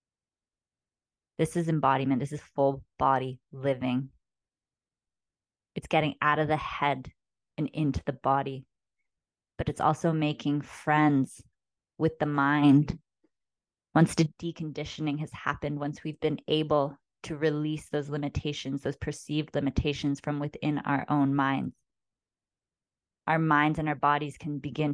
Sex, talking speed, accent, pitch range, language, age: female, 130 wpm, American, 135-155 Hz, English, 20-39